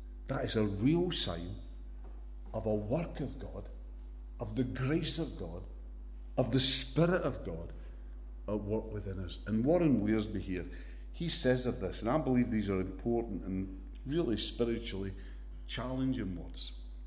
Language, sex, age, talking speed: English, male, 50-69, 150 wpm